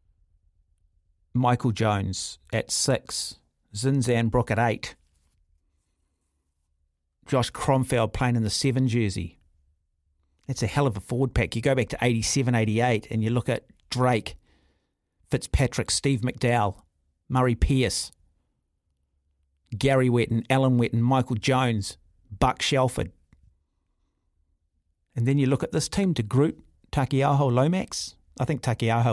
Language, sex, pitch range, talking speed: English, male, 75-125 Hz, 130 wpm